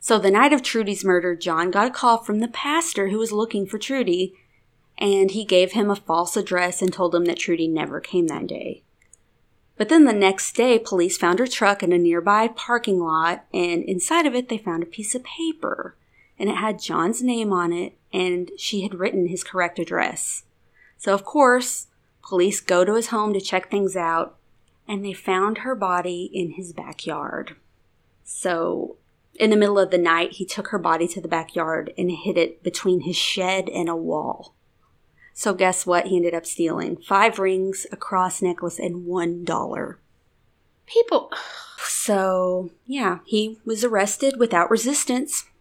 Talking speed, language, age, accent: 180 wpm, English, 30-49, American